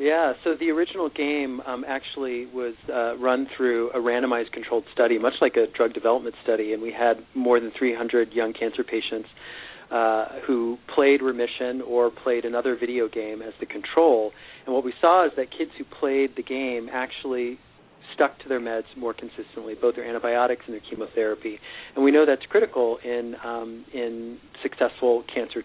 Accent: American